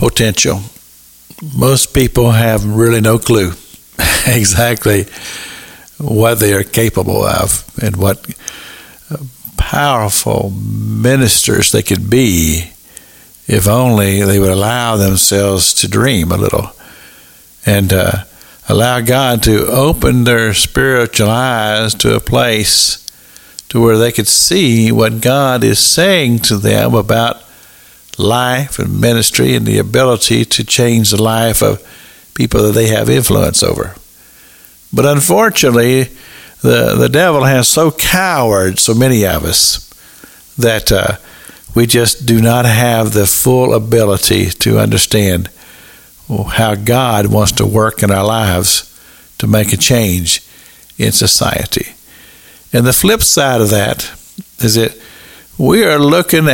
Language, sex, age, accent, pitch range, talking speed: English, male, 60-79, American, 100-120 Hz, 125 wpm